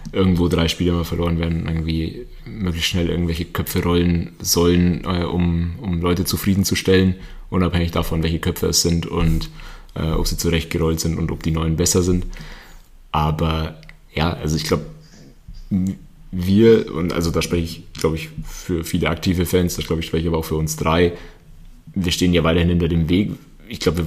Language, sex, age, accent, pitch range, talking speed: German, male, 30-49, German, 85-95 Hz, 180 wpm